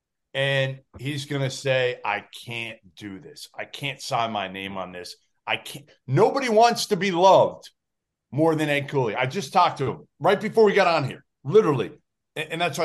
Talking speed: 195 wpm